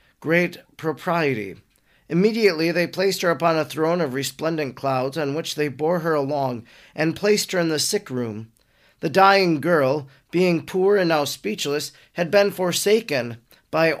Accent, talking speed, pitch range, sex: American, 160 wpm, 140-180 Hz, male